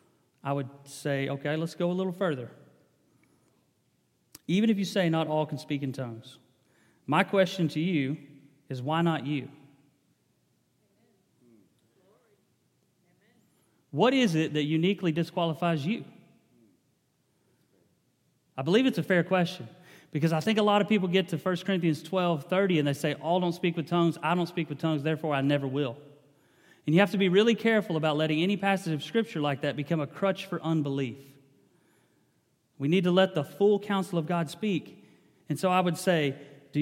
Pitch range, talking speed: 145-185 Hz, 170 wpm